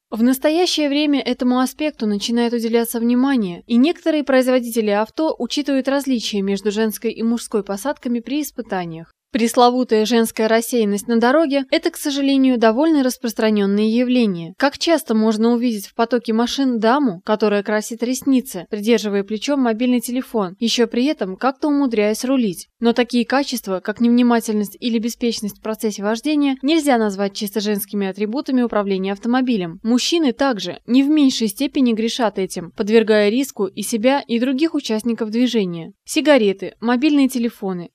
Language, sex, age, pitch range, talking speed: Russian, female, 20-39, 215-265 Hz, 140 wpm